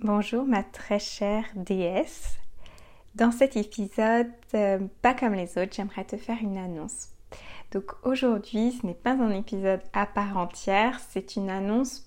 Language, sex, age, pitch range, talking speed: French, female, 20-39, 195-235 Hz, 155 wpm